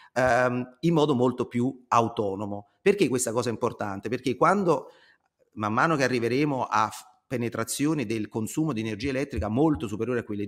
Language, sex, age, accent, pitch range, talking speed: Italian, male, 30-49, native, 110-150 Hz, 155 wpm